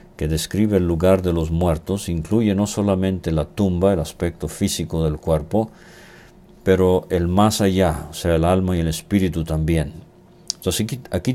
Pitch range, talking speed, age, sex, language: 80-95 Hz, 165 wpm, 50-69, male, English